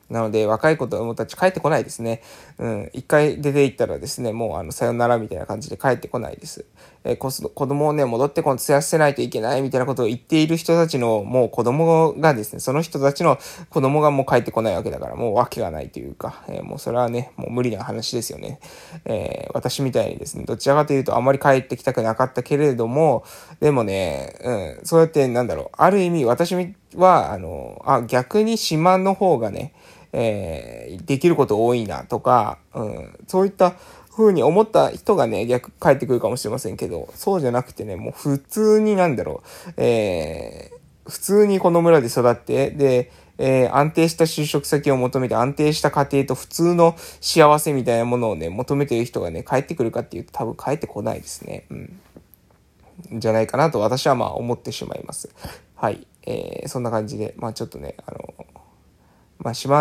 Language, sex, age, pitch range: Japanese, male, 20-39, 120-165 Hz